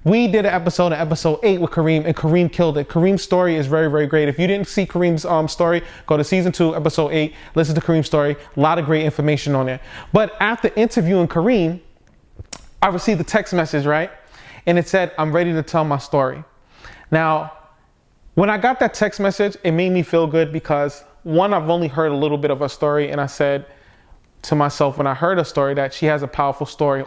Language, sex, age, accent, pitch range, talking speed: English, male, 20-39, American, 145-175 Hz, 225 wpm